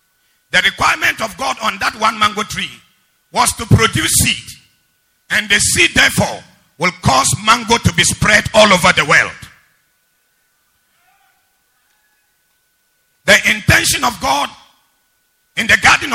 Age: 50-69